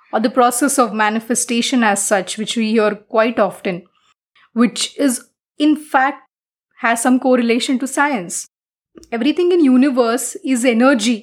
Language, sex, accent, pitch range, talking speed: English, female, Indian, 220-275 Hz, 140 wpm